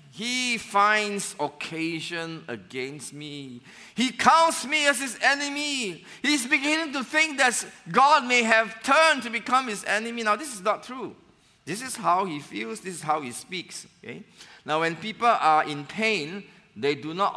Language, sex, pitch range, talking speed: English, male, 145-215 Hz, 170 wpm